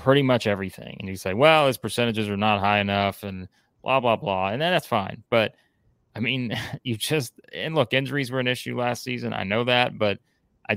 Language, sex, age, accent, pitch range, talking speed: English, male, 30-49, American, 95-115 Hz, 215 wpm